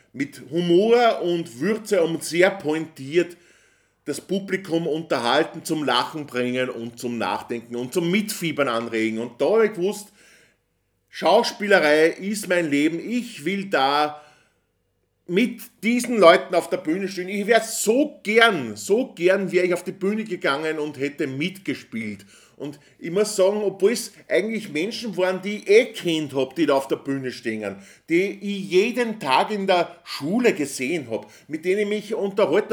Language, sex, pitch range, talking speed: German, male, 140-205 Hz, 160 wpm